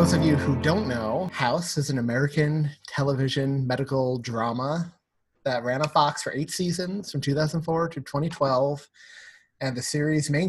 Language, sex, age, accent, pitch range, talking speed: English, male, 30-49, American, 135-160 Hz, 165 wpm